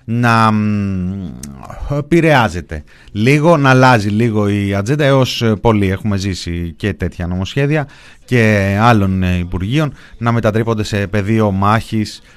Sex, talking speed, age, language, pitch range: male, 110 wpm, 30-49, Greek, 105-145 Hz